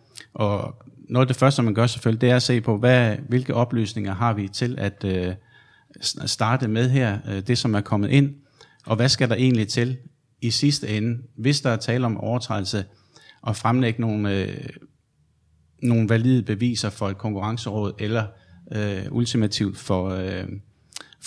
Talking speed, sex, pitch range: 165 wpm, male, 100-120 Hz